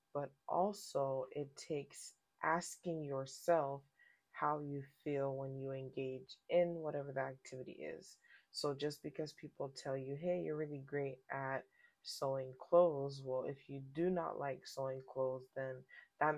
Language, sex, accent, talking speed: English, female, American, 145 wpm